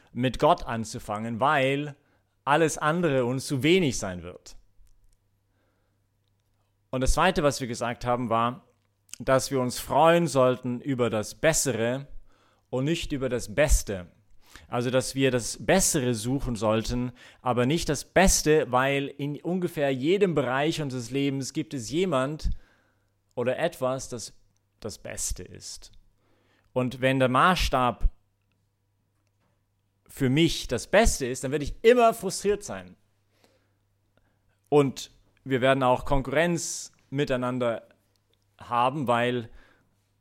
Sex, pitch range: male, 100-145 Hz